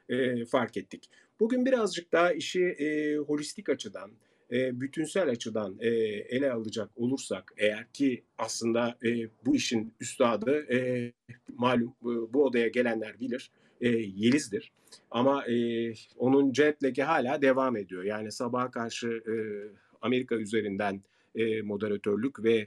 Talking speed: 125 wpm